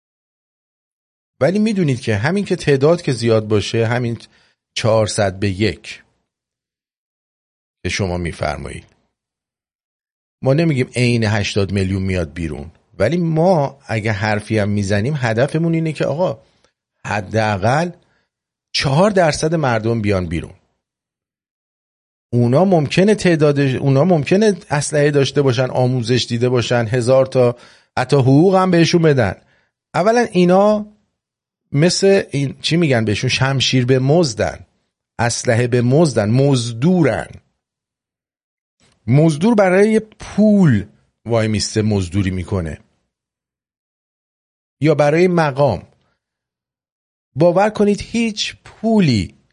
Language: English